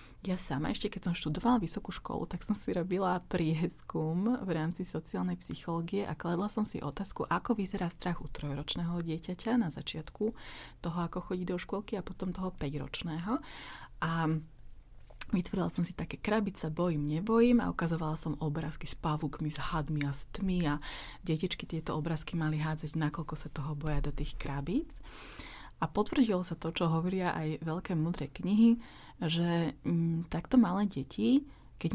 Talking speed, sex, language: 165 wpm, female, Slovak